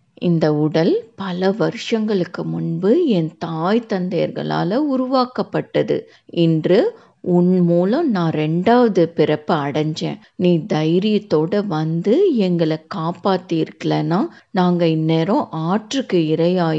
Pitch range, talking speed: 160-200 Hz, 90 wpm